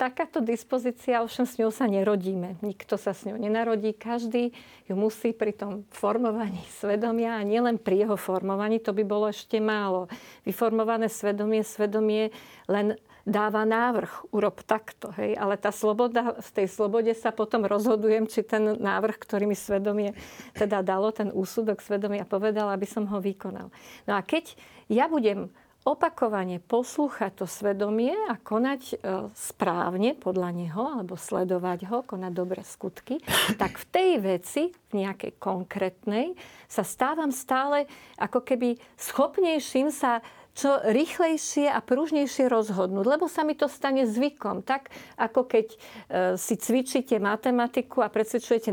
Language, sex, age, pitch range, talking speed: Slovak, female, 50-69, 205-255 Hz, 145 wpm